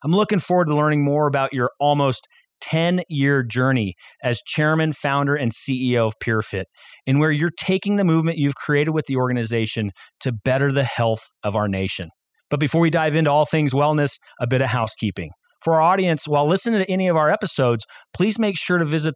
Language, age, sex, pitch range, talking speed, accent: English, 30-49, male, 125-155 Hz, 195 wpm, American